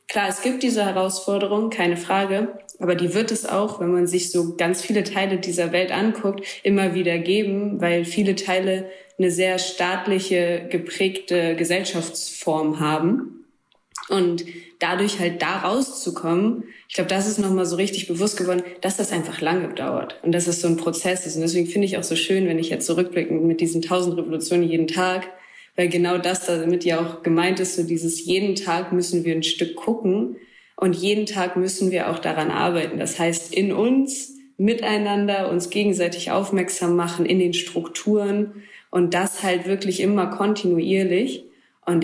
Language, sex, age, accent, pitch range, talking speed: German, female, 20-39, German, 170-195 Hz, 175 wpm